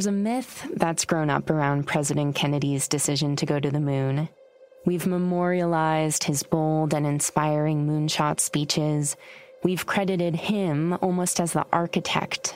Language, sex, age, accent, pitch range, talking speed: English, female, 20-39, American, 155-200 Hz, 145 wpm